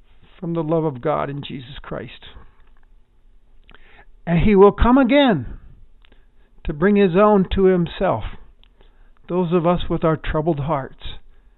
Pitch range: 125-180 Hz